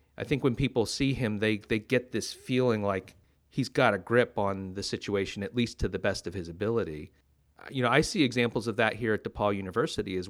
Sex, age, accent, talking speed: male, 30-49, American, 225 wpm